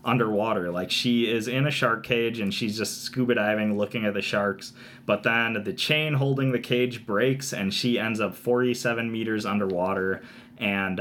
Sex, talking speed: male, 180 wpm